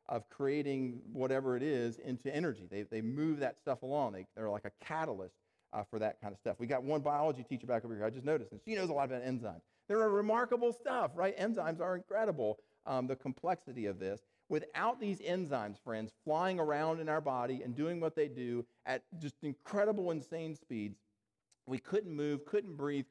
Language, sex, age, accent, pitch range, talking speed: English, male, 40-59, American, 120-165 Hz, 205 wpm